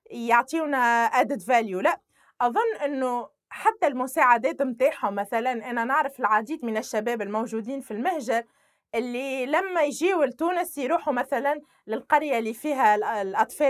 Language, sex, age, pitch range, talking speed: Arabic, female, 20-39, 230-325 Hz, 125 wpm